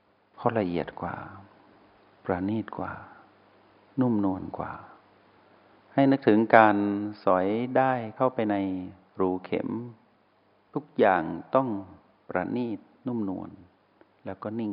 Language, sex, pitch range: Thai, male, 95-120 Hz